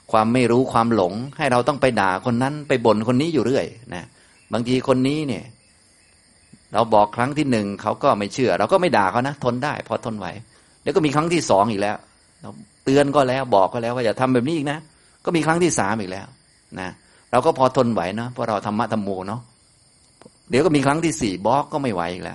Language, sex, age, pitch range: Thai, male, 30-49, 95-125 Hz